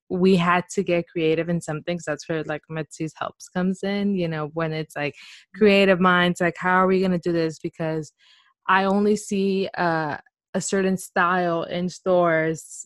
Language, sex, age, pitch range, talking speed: English, female, 20-39, 155-200 Hz, 185 wpm